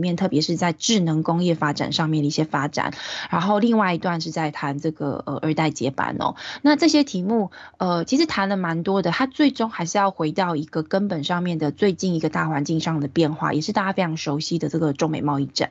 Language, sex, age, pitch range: Chinese, female, 20-39, 155-195 Hz